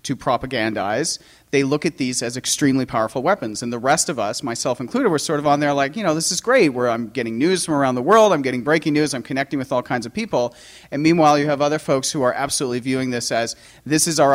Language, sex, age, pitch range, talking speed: English, male, 40-59, 120-145 Hz, 260 wpm